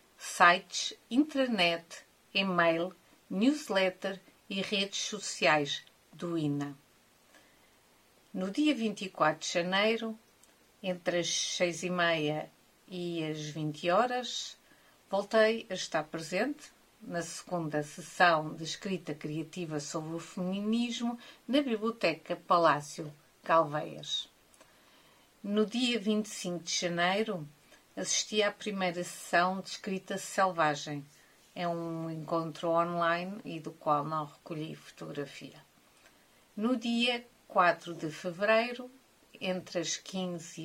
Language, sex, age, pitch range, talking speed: Portuguese, female, 50-69, 165-205 Hz, 105 wpm